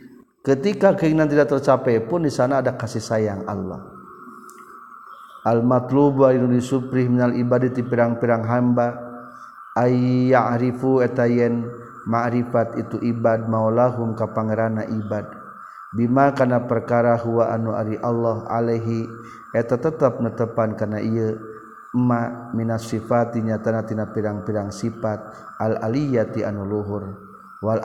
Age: 40-59